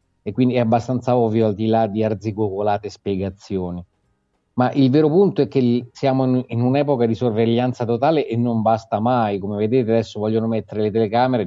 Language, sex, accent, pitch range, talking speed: Italian, male, native, 105-125 Hz, 180 wpm